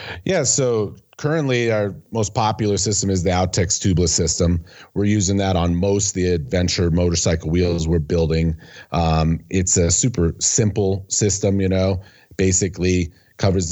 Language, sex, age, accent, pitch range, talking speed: English, male, 40-59, American, 85-105 Hz, 150 wpm